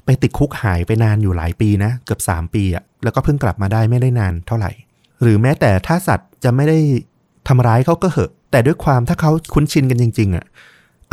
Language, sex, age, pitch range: Thai, male, 20-39, 100-130 Hz